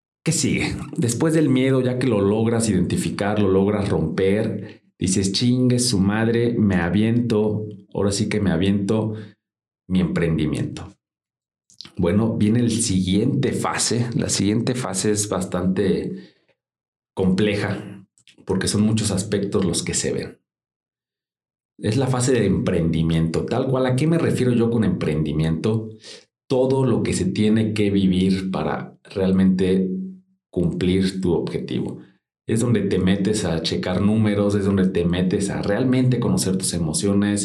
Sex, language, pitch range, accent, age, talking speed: male, Spanish, 95-110 Hz, Mexican, 40-59, 140 wpm